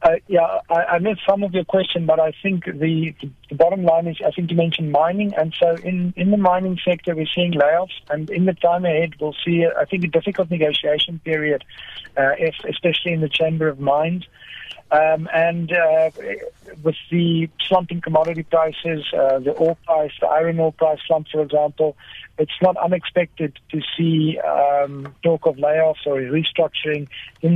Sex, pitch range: male, 150-170 Hz